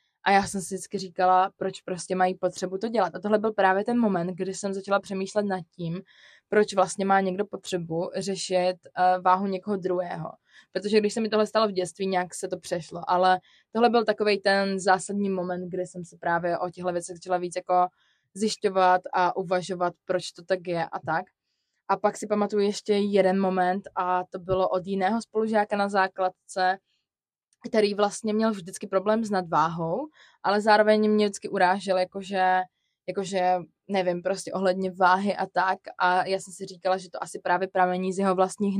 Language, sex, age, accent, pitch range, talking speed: Czech, female, 20-39, native, 180-195 Hz, 185 wpm